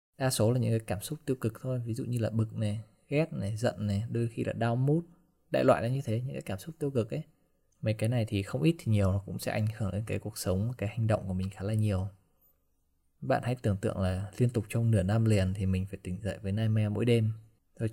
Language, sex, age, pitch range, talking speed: Vietnamese, male, 20-39, 100-125 Hz, 280 wpm